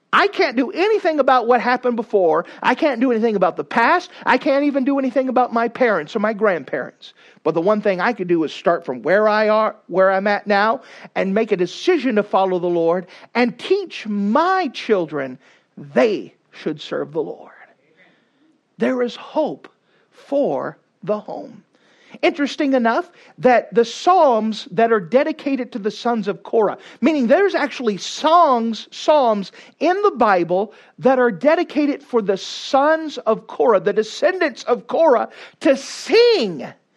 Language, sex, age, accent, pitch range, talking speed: English, male, 50-69, American, 215-285 Hz, 165 wpm